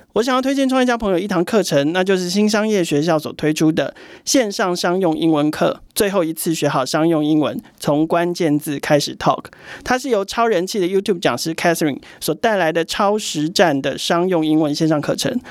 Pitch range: 160-210 Hz